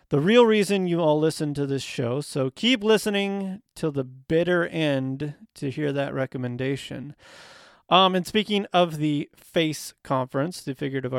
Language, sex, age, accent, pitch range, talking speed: English, male, 30-49, American, 130-165 Hz, 155 wpm